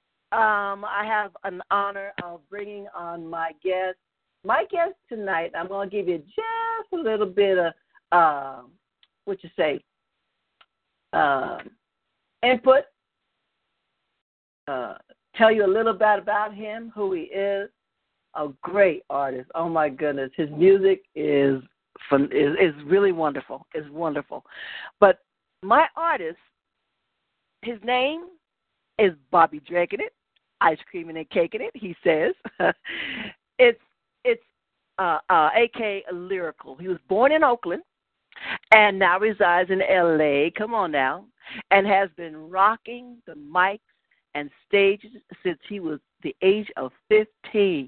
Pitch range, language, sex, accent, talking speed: 170-220 Hz, English, female, American, 130 wpm